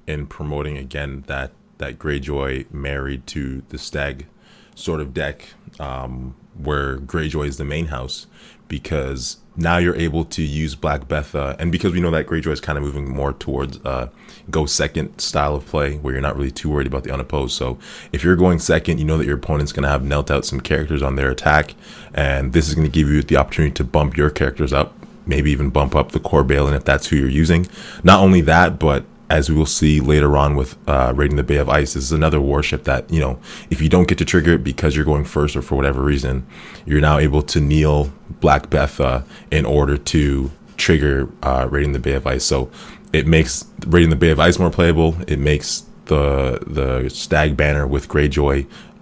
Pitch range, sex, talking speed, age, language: 70-80 Hz, male, 220 wpm, 20-39, English